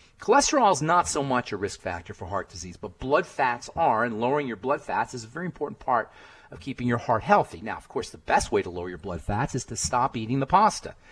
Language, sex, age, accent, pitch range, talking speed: English, male, 40-59, American, 110-180 Hz, 255 wpm